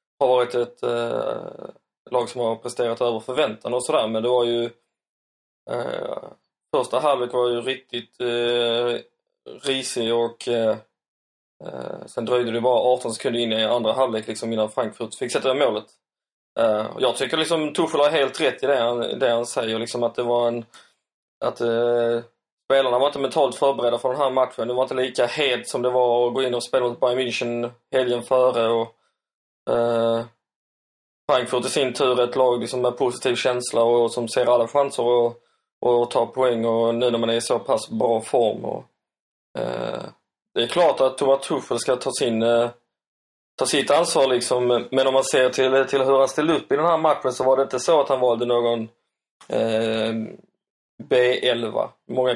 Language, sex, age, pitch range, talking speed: Swedish, male, 20-39, 115-130 Hz, 180 wpm